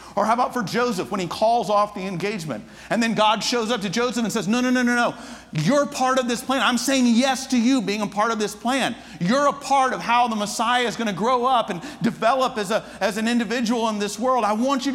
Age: 50-69